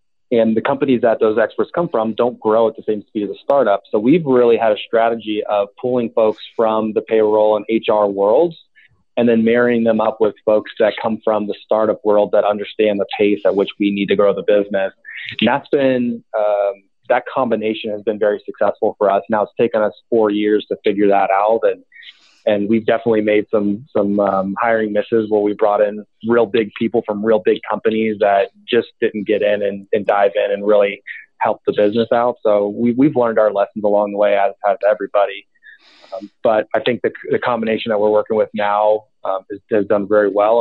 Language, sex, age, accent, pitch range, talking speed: English, male, 30-49, American, 105-115 Hz, 215 wpm